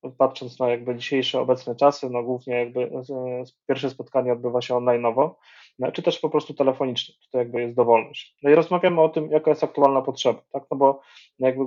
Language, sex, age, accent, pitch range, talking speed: Polish, male, 20-39, native, 125-145 Hz, 185 wpm